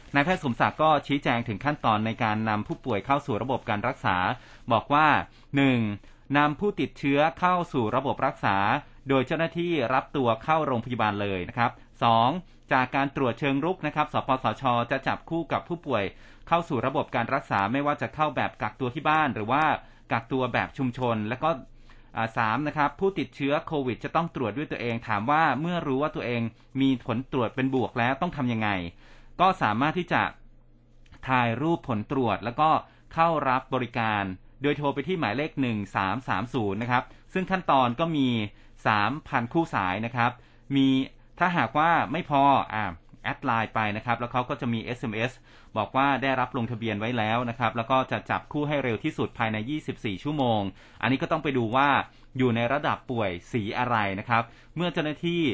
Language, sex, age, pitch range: Thai, male, 30-49, 115-145 Hz